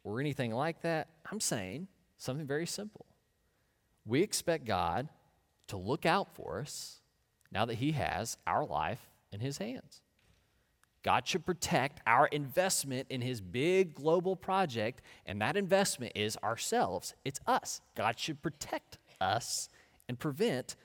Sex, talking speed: male, 140 wpm